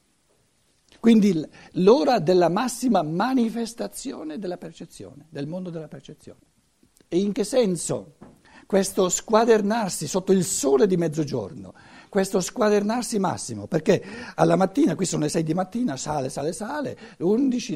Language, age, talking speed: Italian, 60-79, 130 wpm